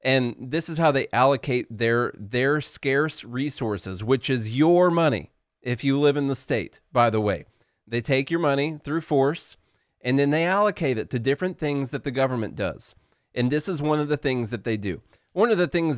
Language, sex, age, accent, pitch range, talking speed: English, male, 30-49, American, 110-145 Hz, 205 wpm